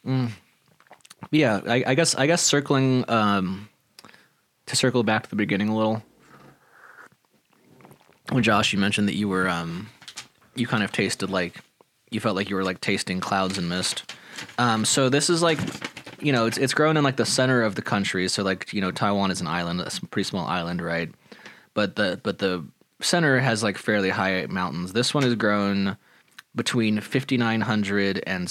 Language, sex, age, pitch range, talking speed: English, male, 20-39, 95-120 Hz, 185 wpm